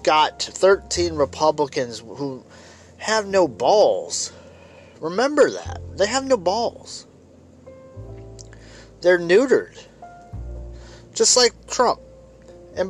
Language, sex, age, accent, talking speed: English, male, 30-49, American, 90 wpm